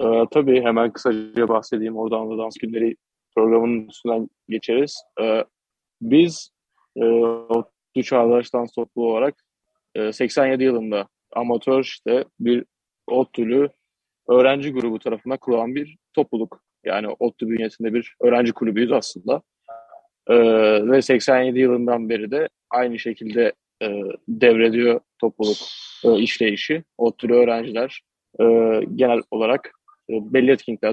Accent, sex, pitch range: native, male, 115-130 Hz